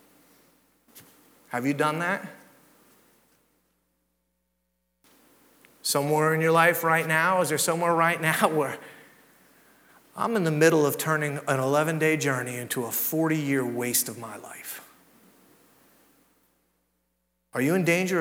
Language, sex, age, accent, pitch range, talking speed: English, male, 40-59, American, 165-265 Hz, 120 wpm